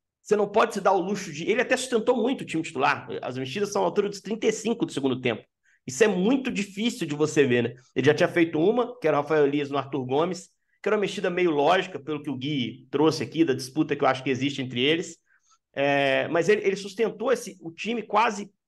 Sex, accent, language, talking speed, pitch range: male, Brazilian, Portuguese, 240 wpm, 150-205 Hz